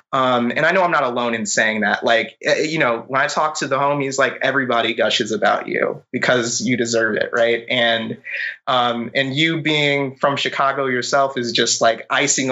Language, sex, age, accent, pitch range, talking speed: English, male, 20-39, American, 120-145 Hz, 195 wpm